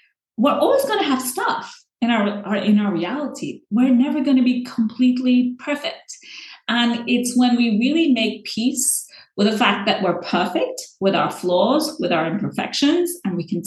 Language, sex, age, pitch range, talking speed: English, female, 30-49, 210-275 Hz, 180 wpm